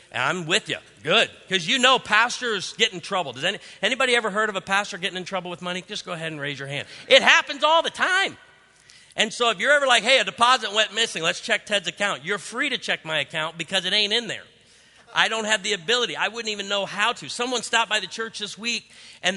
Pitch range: 155-215 Hz